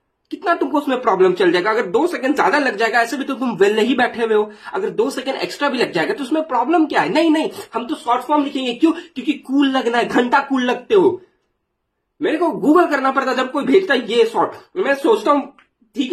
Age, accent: 20-39, native